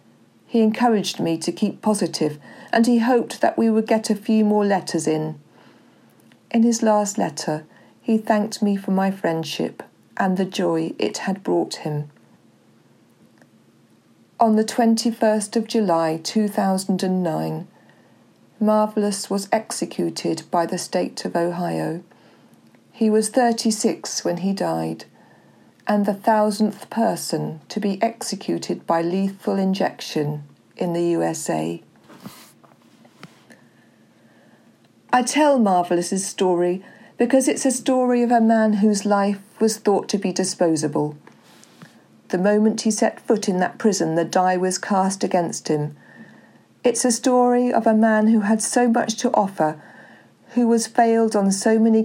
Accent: British